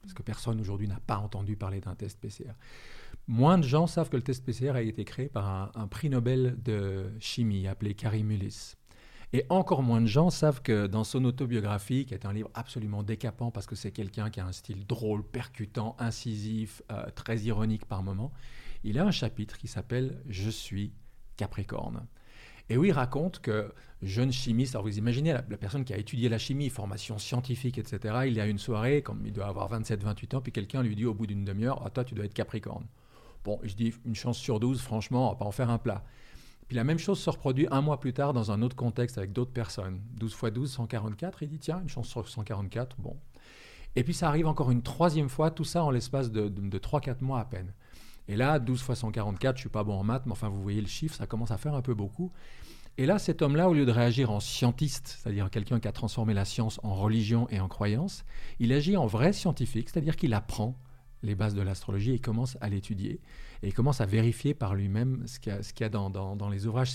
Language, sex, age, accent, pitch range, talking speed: French, male, 40-59, French, 105-130 Hz, 240 wpm